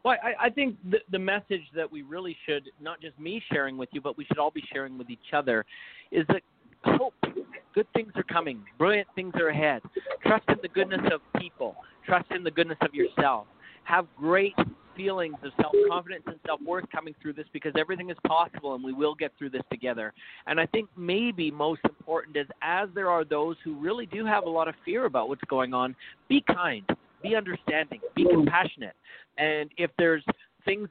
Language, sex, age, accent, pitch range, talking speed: English, male, 40-59, American, 150-195 Hz, 200 wpm